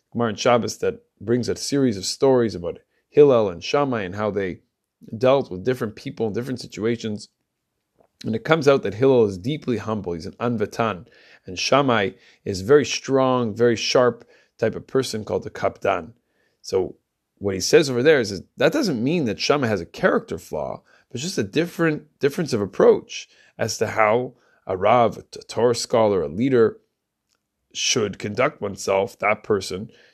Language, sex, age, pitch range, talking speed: English, male, 30-49, 110-145 Hz, 175 wpm